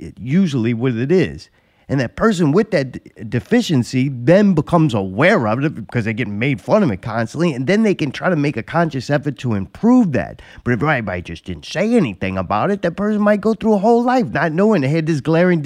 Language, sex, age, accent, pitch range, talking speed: English, male, 30-49, American, 125-190 Hz, 225 wpm